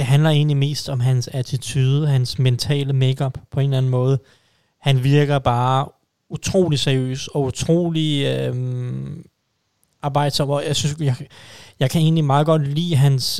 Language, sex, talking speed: Danish, male, 155 wpm